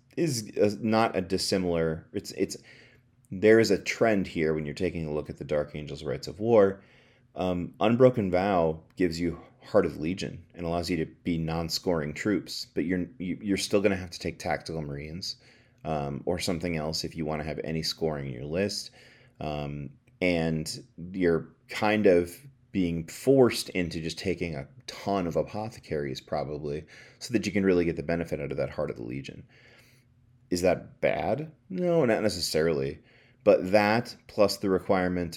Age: 30-49